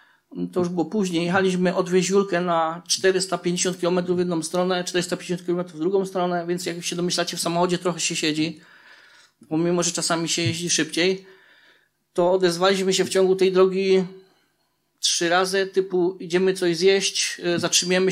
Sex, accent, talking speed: male, native, 150 wpm